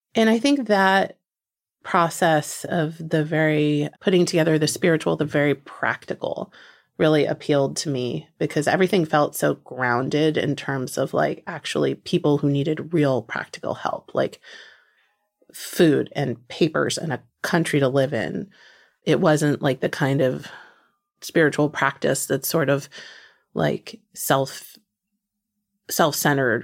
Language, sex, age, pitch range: English, female, 30-49, 145-170 Hz